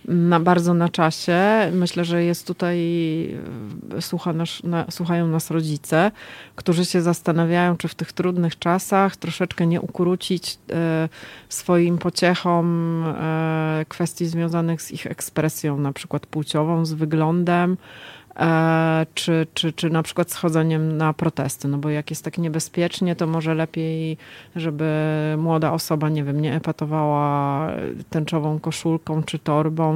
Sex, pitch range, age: female, 155-175 Hz, 30-49